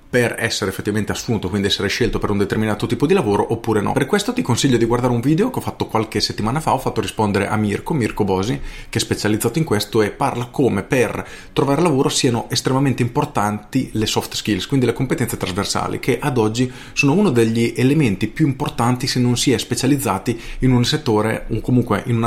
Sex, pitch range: male, 105-135 Hz